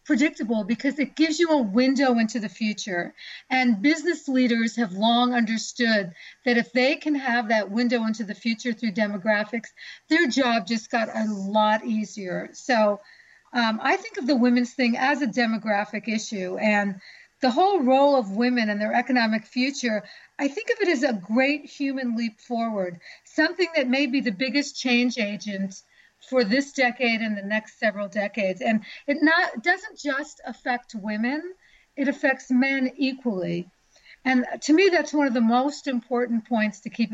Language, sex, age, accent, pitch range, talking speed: English, female, 40-59, American, 220-280 Hz, 170 wpm